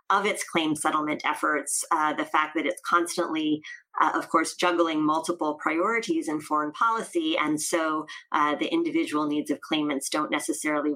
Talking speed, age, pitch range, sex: 165 wpm, 30-49, 155-210 Hz, female